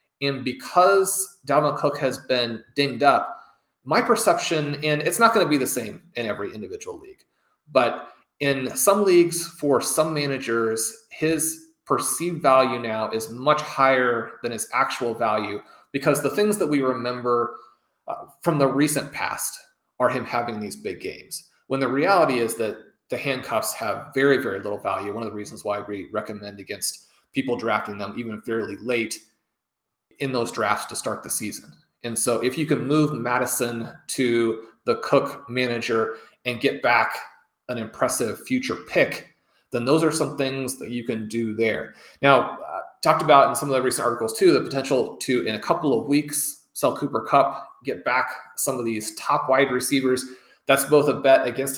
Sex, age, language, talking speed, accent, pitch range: male, 30-49, English, 175 wpm, American, 120-150 Hz